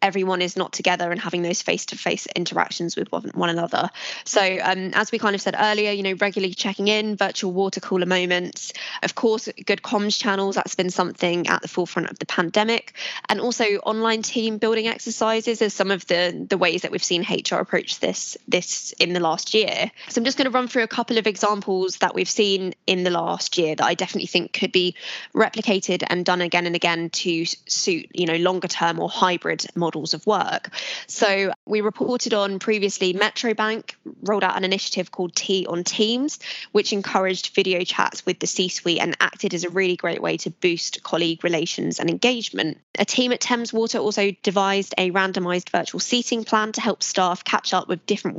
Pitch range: 175-215 Hz